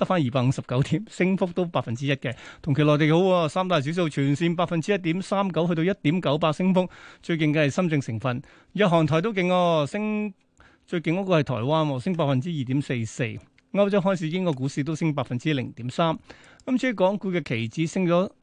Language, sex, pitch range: Chinese, male, 140-180 Hz